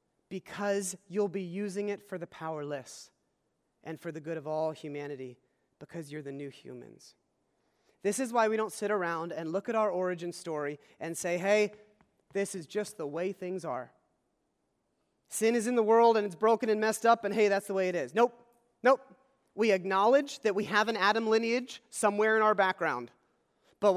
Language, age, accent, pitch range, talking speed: English, 30-49, American, 160-210 Hz, 190 wpm